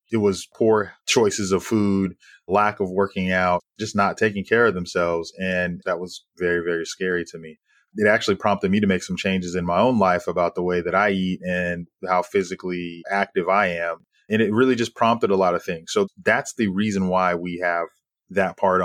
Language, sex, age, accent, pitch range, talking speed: English, male, 20-39, American, 90-110 Hz, 210 wpm